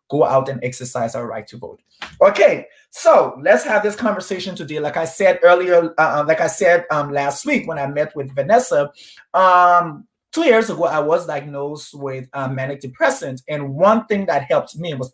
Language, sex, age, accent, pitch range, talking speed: English, male, 30-49, American, 150-200 Hz, 200 wpm